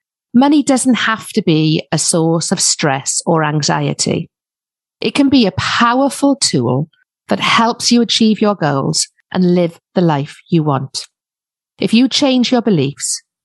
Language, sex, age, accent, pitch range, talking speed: English, female, 50-69, British, 155-215 Hz, 150 wpm